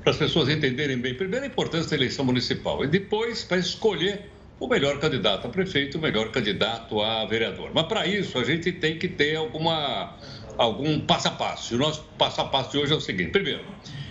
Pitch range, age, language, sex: 140-205 Hz, 60-79, Portuguese, male